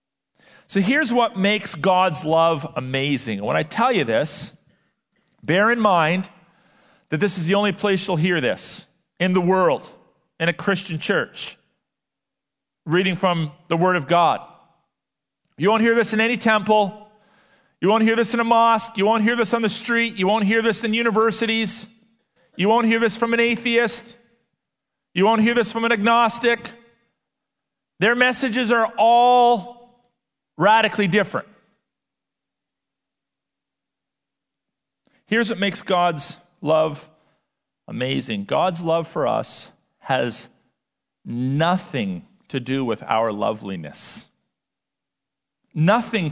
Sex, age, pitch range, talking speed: male, 40-59, 175-230 Hz, 130 wpm